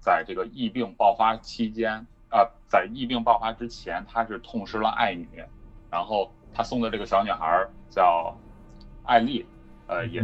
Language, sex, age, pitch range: Chinese, male, 30-49, 95-115 Hz